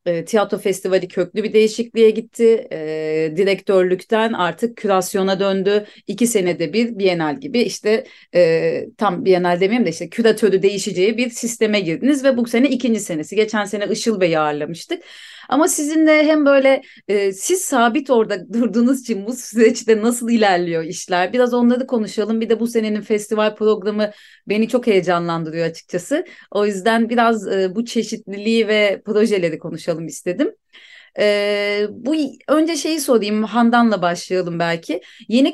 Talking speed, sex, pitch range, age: 145 wpm, female, 195-255 Hz, 30-49